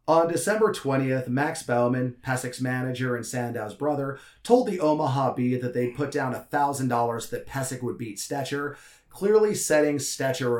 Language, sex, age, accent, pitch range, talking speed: English, male, 30-49, American, 130-180 Hz, 165 wpm